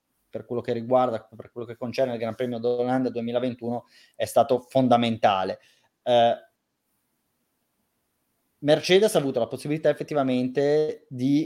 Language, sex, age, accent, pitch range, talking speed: Italian, male, 30-49, native, 130-165 Hz, 125 wpm